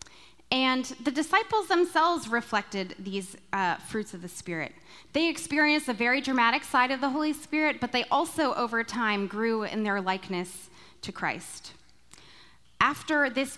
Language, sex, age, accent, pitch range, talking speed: English, female, 20-39, American, 195-260 Hz, 150 wpm